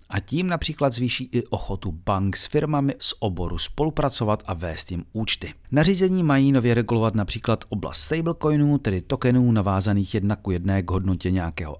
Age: 40-59